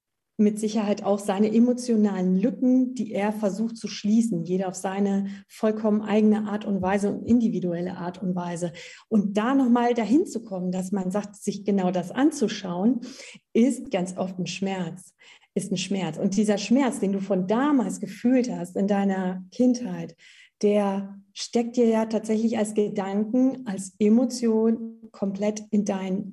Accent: German